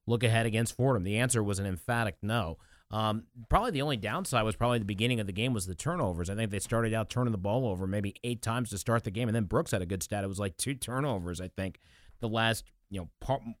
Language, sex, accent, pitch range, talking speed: English, male, American, 105-135 Hz, 265 wpm